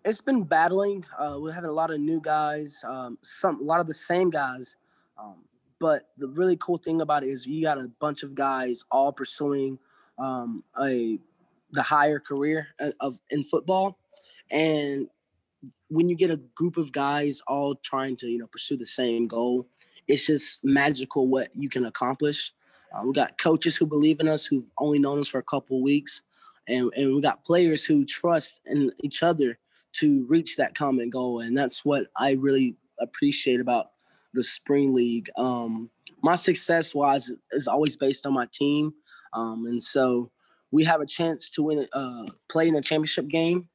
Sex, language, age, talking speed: male, English, 20-39, 185 wpm